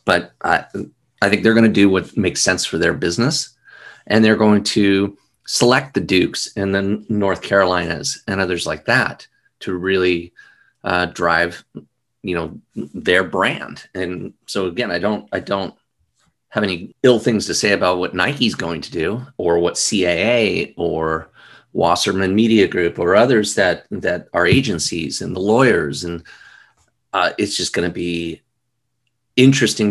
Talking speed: 160 wpm